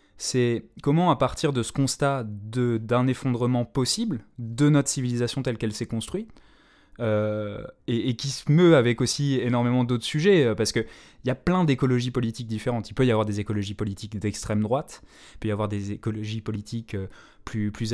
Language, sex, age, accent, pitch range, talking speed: French, male, 20-39, French, 110-140 Hz, 185 wpm